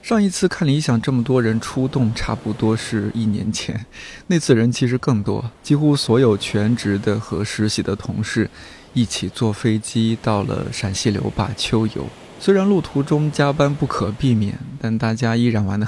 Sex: male